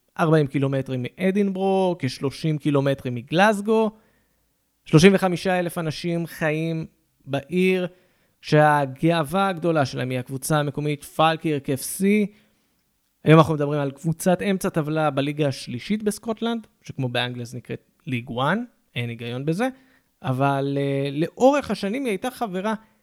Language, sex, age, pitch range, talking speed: Hebrew, male, 20-39, 130-185 Hz, 115 wpm